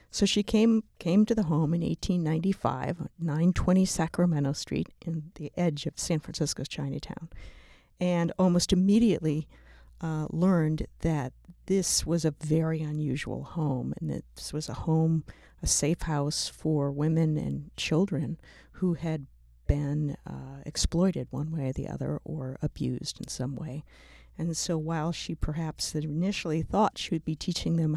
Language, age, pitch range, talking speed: English, 50-69, 145-170 Hz, 155 wpm